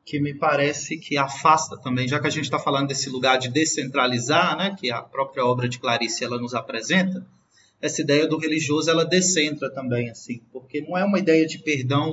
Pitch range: 135-175 Hz